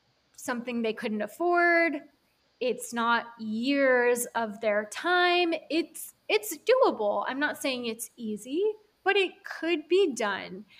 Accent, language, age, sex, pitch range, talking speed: American, English, 20-39, female, 220-300 Hz, 130 wpm